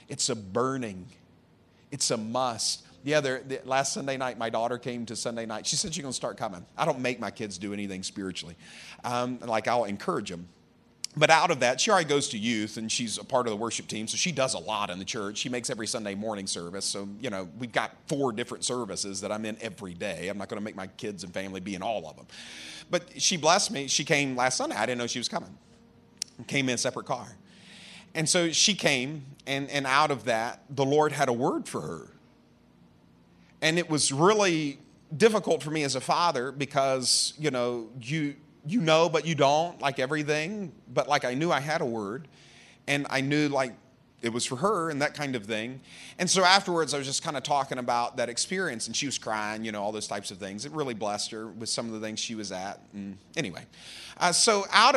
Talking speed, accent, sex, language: 230 wpm, American, male, English